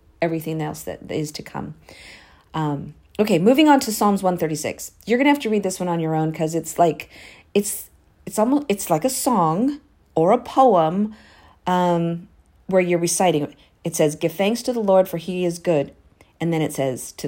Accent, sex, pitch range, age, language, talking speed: American, female, 160-220 Hz, 40-59, English, 200 wpm